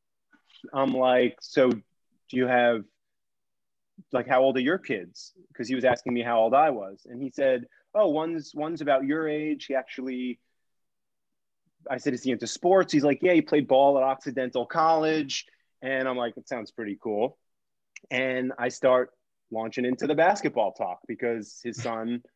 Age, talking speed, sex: 30-49, 175 wpm, male